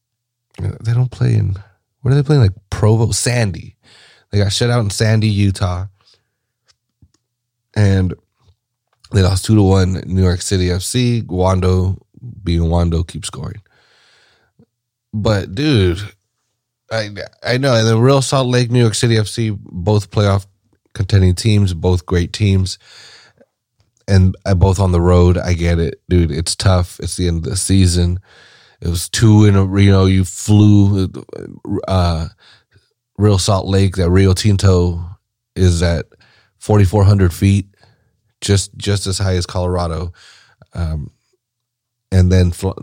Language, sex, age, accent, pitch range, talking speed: English, male, 30-49, American, 90-115 Hz, 140 wpm